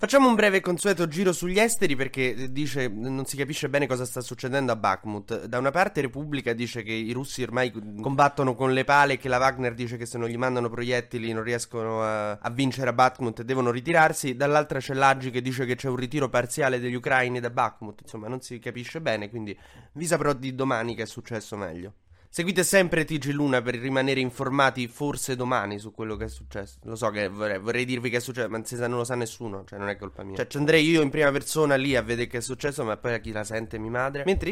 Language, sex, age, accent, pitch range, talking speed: Italian, male, 20-39, native, 115-145 Hz, 240 wpm